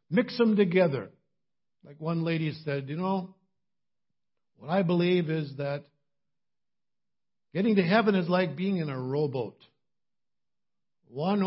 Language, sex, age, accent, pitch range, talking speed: English, male, 60-79, American, 135-195 Hz, 125 wpm